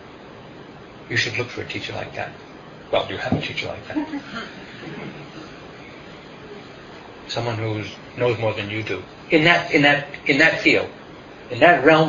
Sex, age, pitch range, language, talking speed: male, 40-59, 110-145 Hz, English, 165 wpm